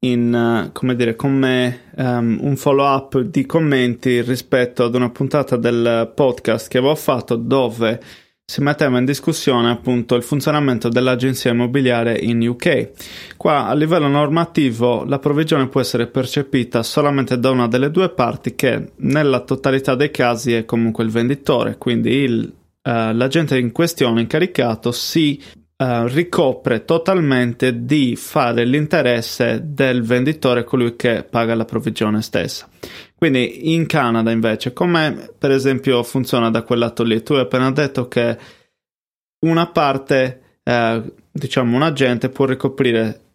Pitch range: 120-140 Hz